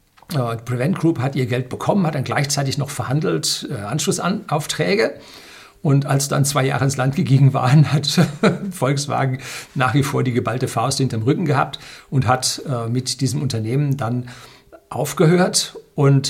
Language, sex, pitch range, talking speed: German, male, 125-155 Hz, 155 wpm